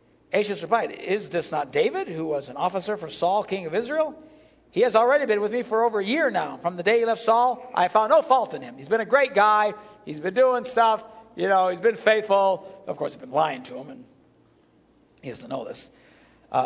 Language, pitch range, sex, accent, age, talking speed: English, 185-245 Hz, male, American, 60-79, 235 wpm